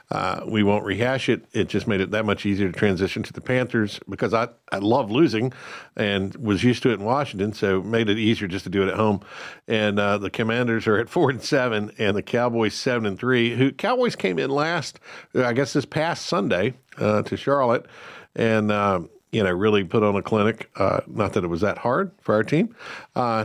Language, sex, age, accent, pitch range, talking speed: English, male, 50-69, American, 95-115 Hz, 225 wpm